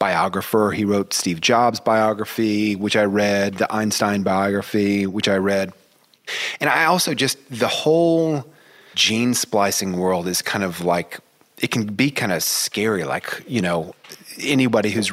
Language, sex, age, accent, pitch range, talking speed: English, male, 30-49, American, 95-110 Hz, 155 wpm